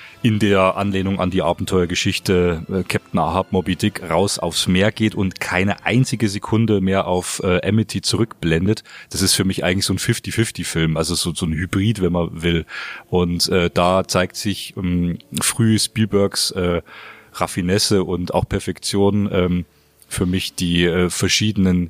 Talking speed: 165 wpm